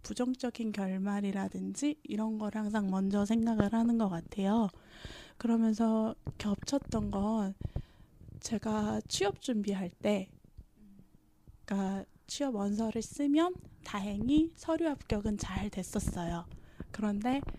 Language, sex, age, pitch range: Korean, female, 10-29, 200-250 Hz